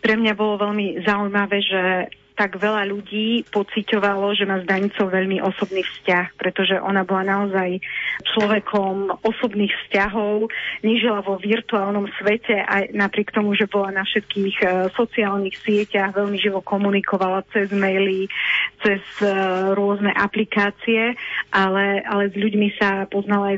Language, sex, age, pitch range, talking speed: Slovak, female, 30-49, 195-210 Hz, 130 wpm